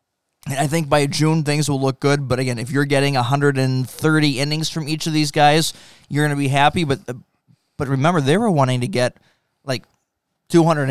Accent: American